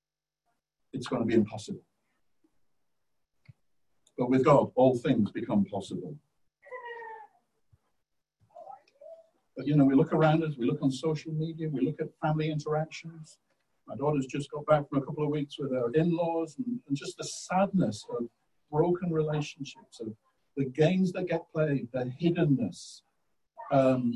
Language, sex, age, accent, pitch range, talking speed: English, male, 60-79, British, 135-175 Hz, 145 wpm